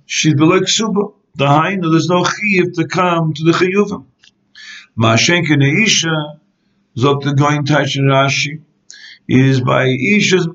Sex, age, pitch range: male, 60-79, 140-185 Hz